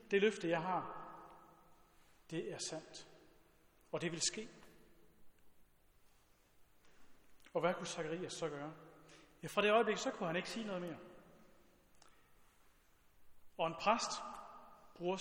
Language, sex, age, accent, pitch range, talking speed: Danish, male, 40-59, native, 170-215 Hz, 125 wpm